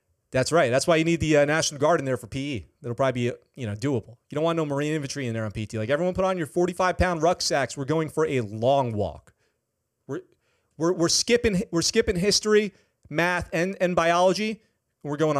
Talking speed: 225 wpm